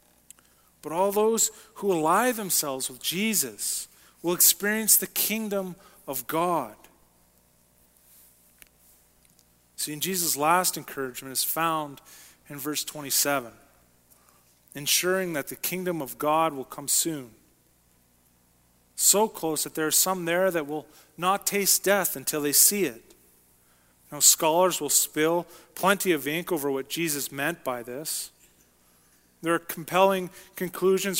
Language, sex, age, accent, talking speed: English, male, 40-59, American, 125 wpm